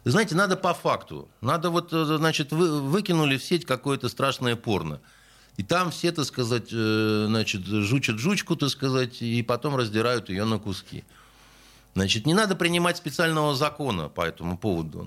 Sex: male